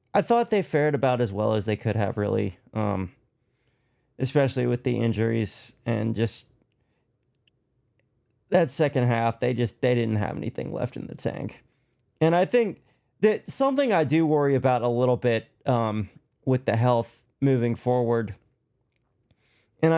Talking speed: 155 wpm